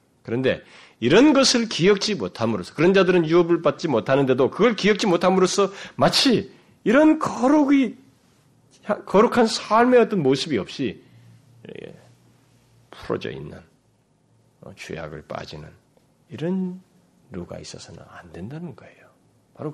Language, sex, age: Korean, male, 40-59